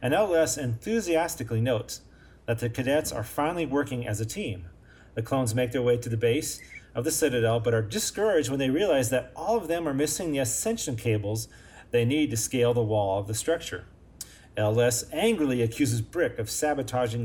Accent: American